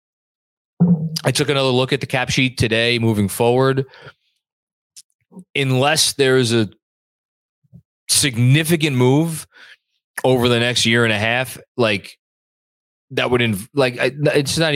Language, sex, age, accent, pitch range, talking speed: English, male, 20-39, American, 110-135 Hz, 130 wpm